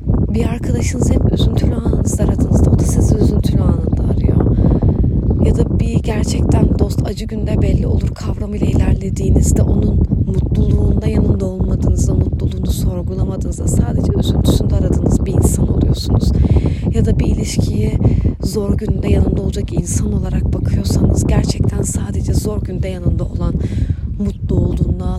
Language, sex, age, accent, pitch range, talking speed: Turkish, female, 30-49, native, 80-100 Hz, 130 wpm